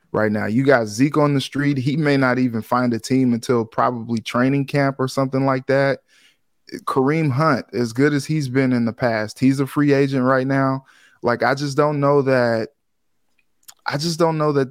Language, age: English, 20-39